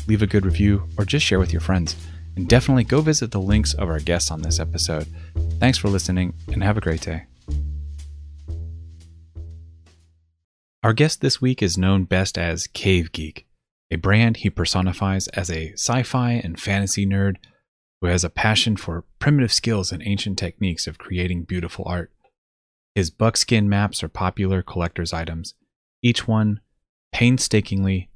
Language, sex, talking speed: English, male, 160 wpm